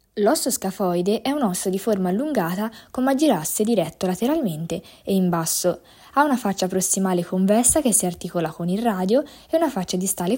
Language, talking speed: Italian, 175 wpm